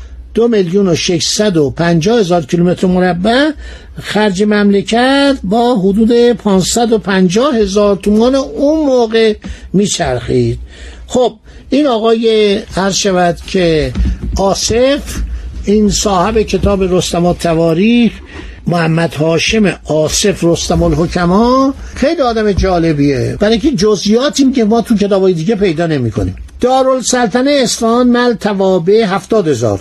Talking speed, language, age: 115 wpm, Persian, 60-79